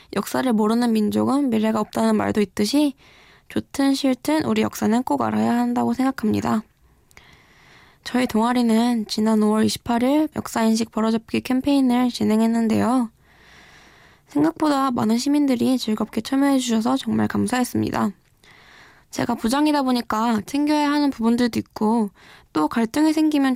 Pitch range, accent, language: 215-260 Hz, native, Korean